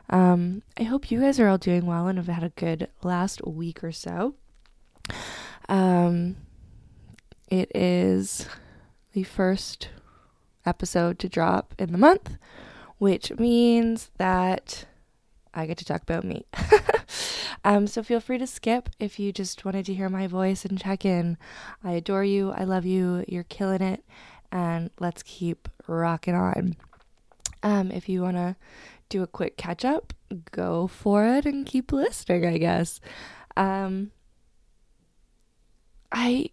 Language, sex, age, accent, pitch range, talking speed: English, female, 20-39, American, 180-230 Hz, 145 wpm